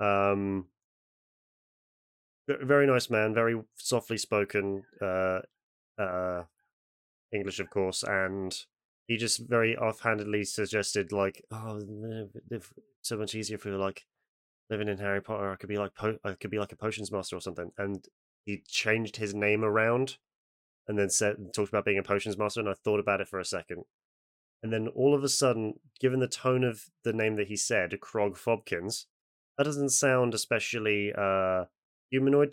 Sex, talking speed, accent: male, 165 wpm, British